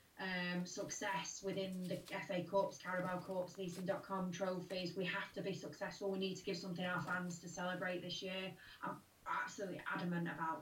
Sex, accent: female, British